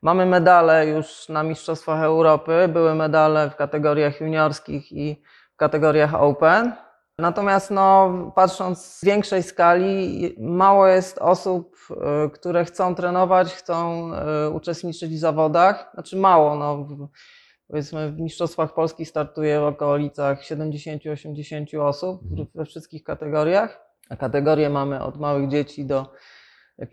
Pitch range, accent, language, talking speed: 145-170 Hz, native, Polish, 120 wpm